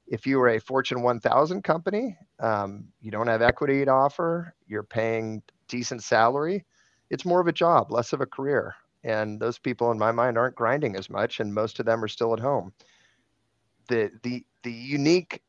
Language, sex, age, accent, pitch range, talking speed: English, male, 30-49, American, 110-130 Hz, 195 wpm